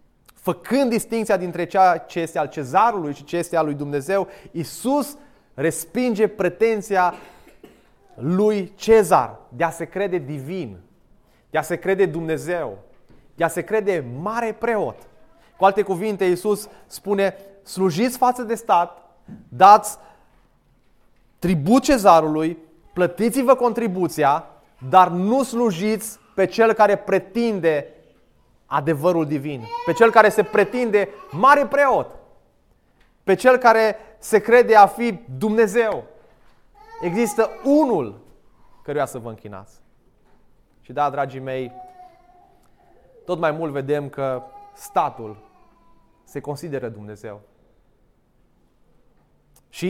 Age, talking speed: 30-49, 110 wpm